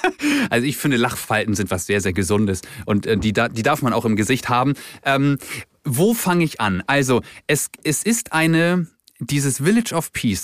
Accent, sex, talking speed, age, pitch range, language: German, male, 185 wpm, 30-49, 110-155 Hz, German